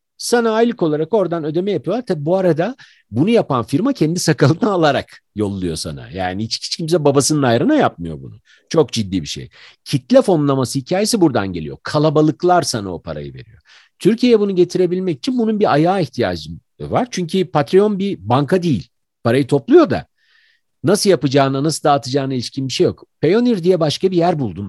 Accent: native